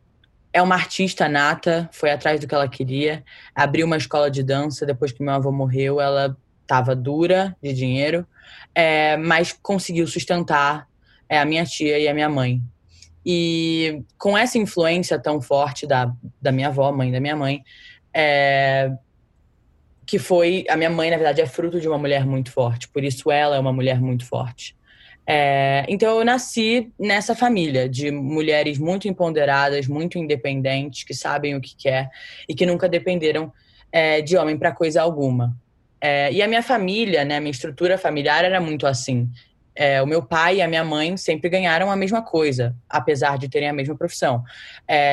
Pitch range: 140-170 Hz